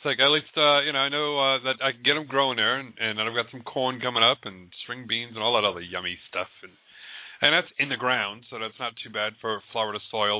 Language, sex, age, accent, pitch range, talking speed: English, male, 40-59, American, 105-130 Hz, 285 wpm